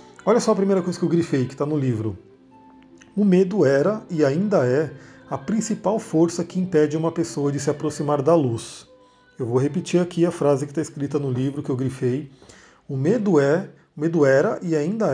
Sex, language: male, Portuguese